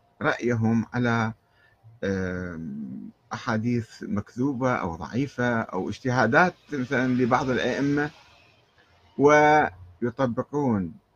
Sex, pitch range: male, 105-130 Hz